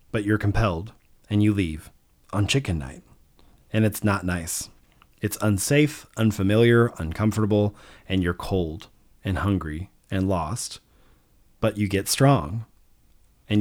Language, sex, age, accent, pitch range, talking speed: English, male, 30-49, American, 90-115 Hz, 130 wpm